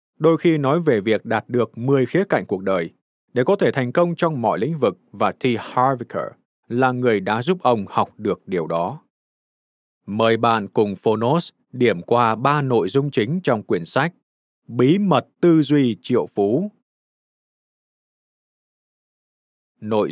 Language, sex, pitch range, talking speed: Vietnamese, male, 115-160 Hz, 160 wpm